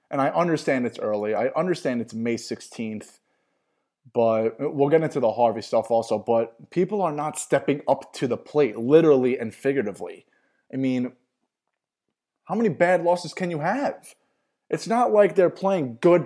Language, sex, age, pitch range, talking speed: English, male, 20-39, 135-215 Hz, 165 wpm